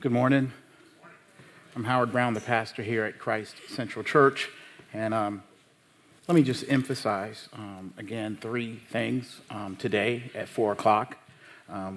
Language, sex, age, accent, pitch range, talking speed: English, male, 40-59, American, 100-125 Hz, 140 wpm